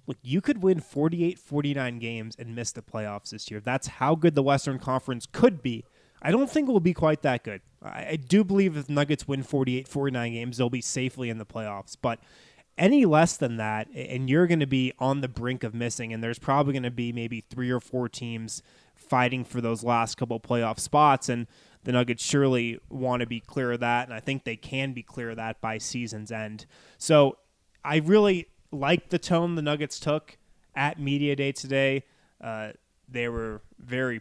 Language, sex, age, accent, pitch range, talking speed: English, male, 20-39, American, 115-145 Hz, 205 wpm